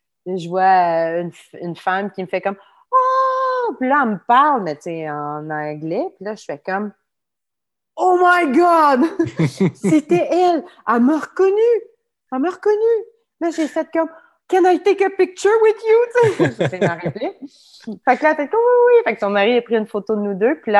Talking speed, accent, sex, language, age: 230 wpm, French, female, French, 30-49